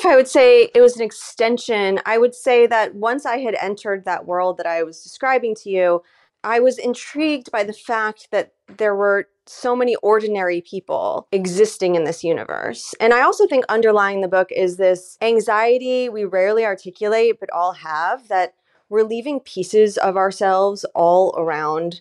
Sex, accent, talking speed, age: female, American, 175 wpm, 30-49